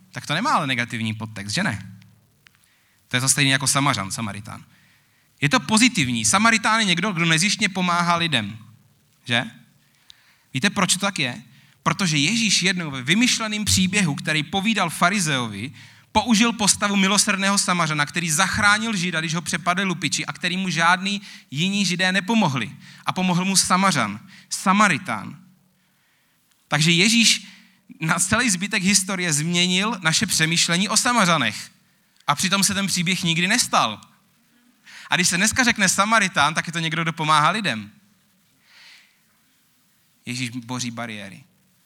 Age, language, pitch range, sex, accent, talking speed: 30-49, Czech, 125-195 Hz, male, native, 140 wpm